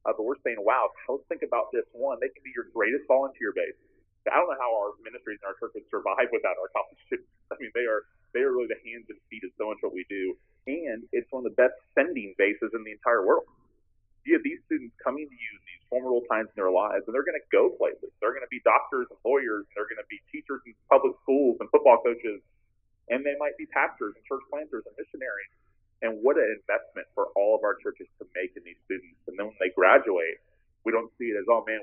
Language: English